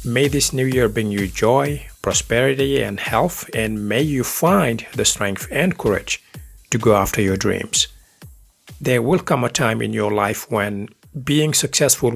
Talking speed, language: 170 wpm, English